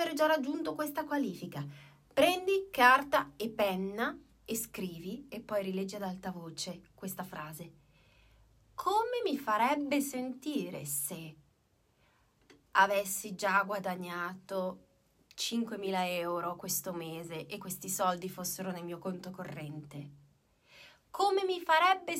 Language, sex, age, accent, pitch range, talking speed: Italian, female, 20-39, native, 190-275 Hz, 110 wpm